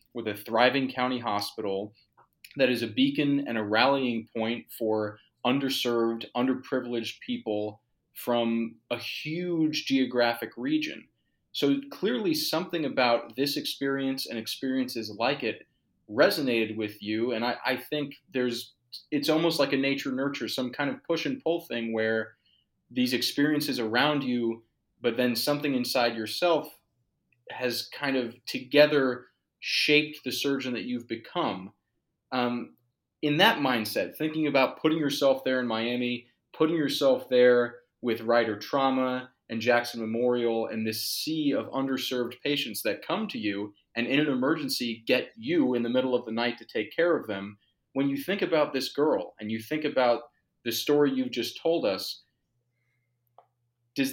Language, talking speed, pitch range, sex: English, 150 wpm, 115-145 Hz, male